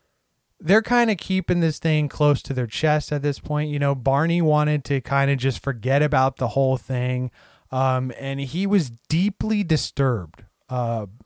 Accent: American